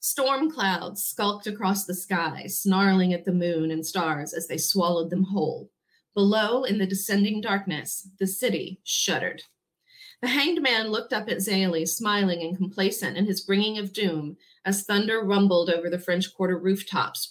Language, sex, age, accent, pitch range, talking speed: English, female, 30-49, American, 175-215 Hz, 165 wpm